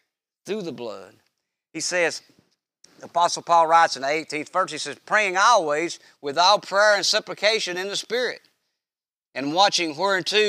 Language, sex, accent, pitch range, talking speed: English, male, American, 160-225 Hz, 160 wpm